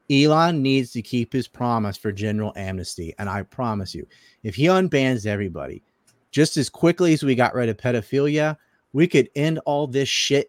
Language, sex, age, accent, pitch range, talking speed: English, male, 30-49, American, 115-165 Hz, 185 wpm